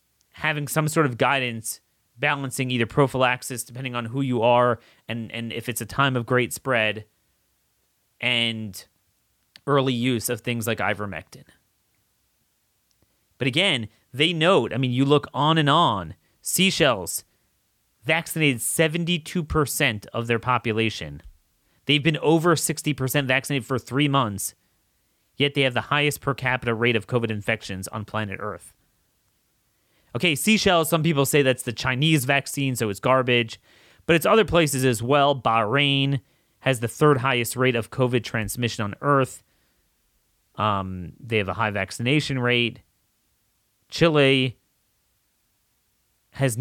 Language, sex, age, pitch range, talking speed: English, male, 30-49, 110-140 Hz, 135 wpm